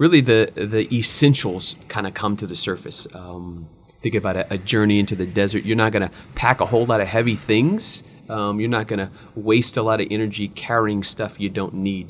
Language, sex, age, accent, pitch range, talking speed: English, male, 30-49, American, 100-125 Hz, 225 wpm